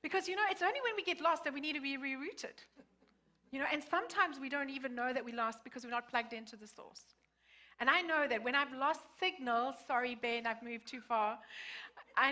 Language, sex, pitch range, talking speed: English, female, 240-320 Hz, 235 wpm